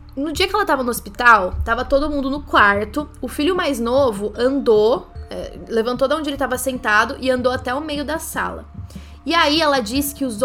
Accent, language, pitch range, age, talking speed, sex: Brazilian, Portuguese, 230-285 Hz, 10-29, 205 wpm, female